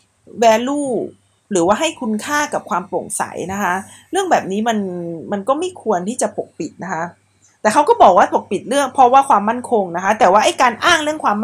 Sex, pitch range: female, 205-285 Hz